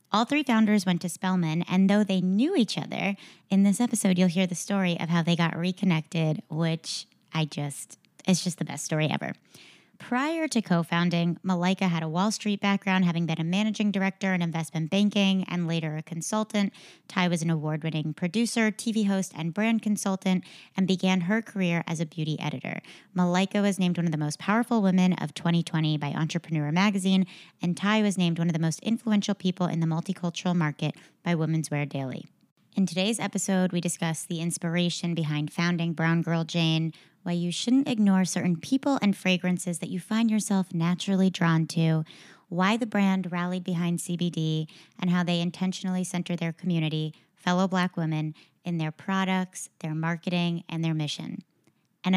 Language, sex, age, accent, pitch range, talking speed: English, female, 30-49, American, 165-190 Hz, 180 wpm